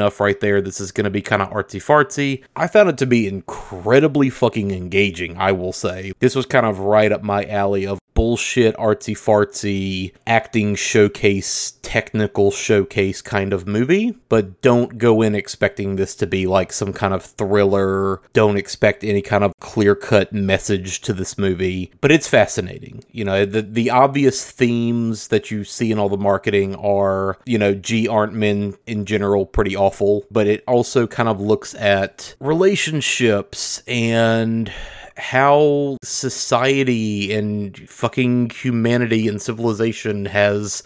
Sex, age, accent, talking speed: male, 30-49, American, 155 wpm